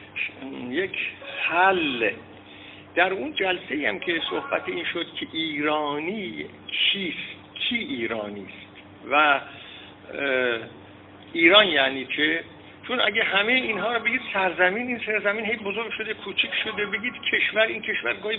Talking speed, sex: 125 wpm, male